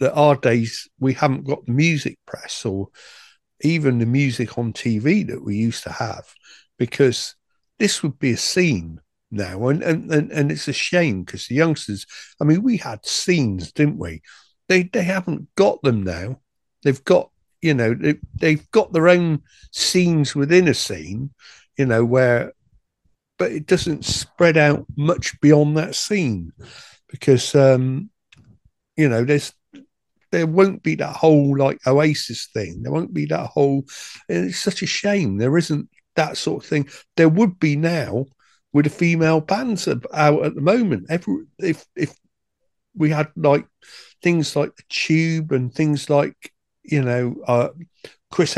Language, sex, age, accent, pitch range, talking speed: English, male, 50-69, British, 125-160 Hz, 160 wpm